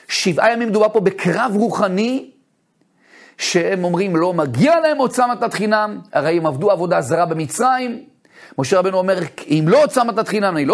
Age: 40-59